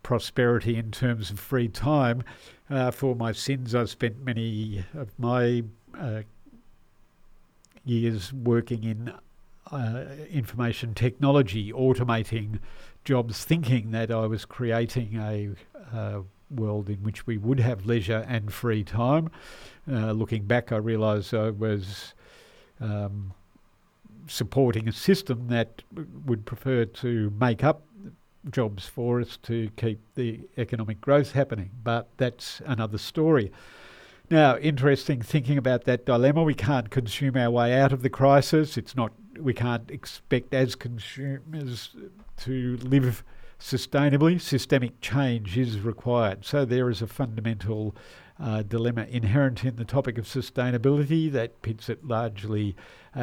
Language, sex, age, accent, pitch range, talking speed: English, male, 50-69, Australian, 110-135 Hz, 135 wpm